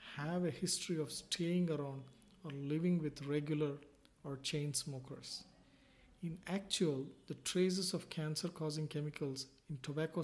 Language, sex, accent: English, male, Indian